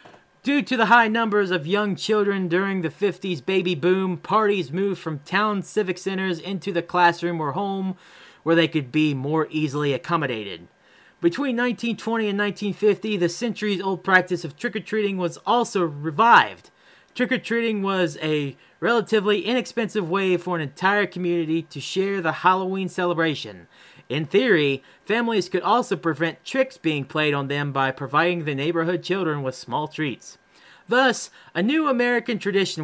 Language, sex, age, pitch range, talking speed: English, male, 30-49, 155-205 Hz, 150 wpm